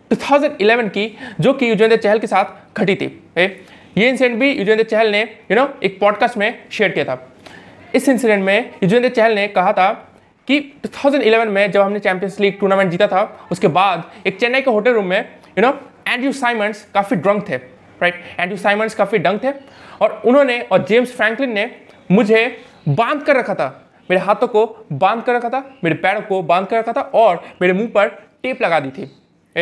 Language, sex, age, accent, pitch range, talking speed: Hindi, male, 20-39, native, 200-250 Hz, 200 wpm